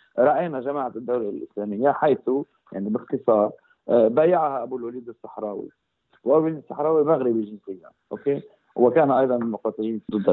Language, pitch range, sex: Arabic, 120-160 Hz, male